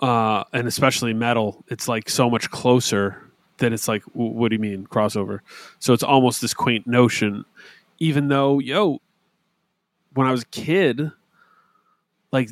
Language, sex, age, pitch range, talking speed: English, male, 30-49, 120-170 Hz, 155 wpm